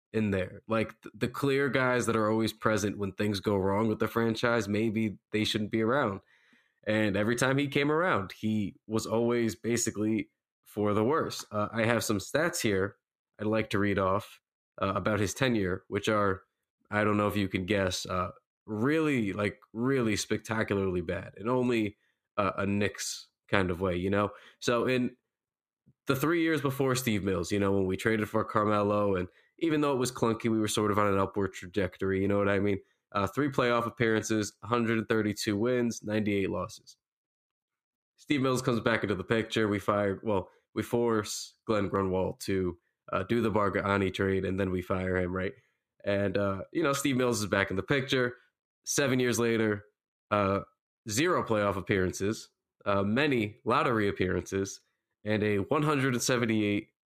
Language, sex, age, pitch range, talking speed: English, male, 20-39, 100-115 Hz, 175 wpm